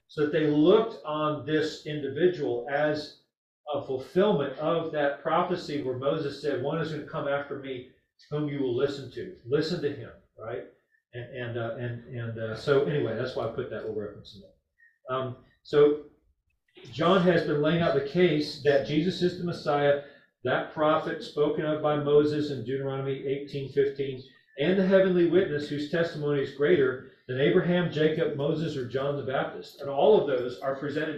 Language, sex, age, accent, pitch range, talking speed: English, male, 40-59, American, 135-165 Hz, 180 wpm